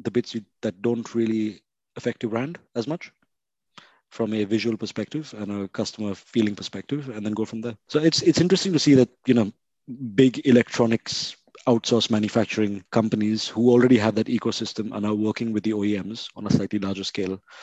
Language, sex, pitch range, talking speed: English, male, 105-130 Hz, 185 wpm